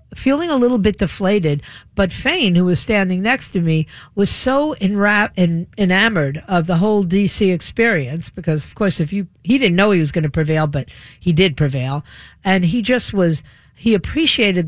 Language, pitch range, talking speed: English, 165-235 Hz, 190 wpm